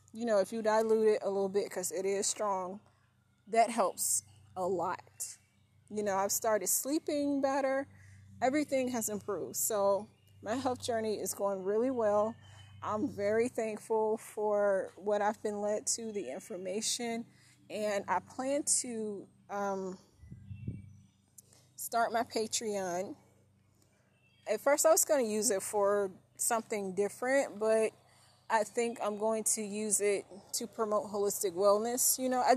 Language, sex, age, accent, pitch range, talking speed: English, female, 20-39, American, 195-235 Hz, 145 wpm